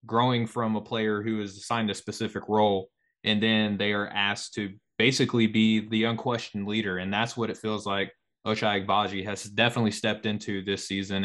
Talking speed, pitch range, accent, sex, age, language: 185 wpm, 100-115 Hz, American, male, 20-39, English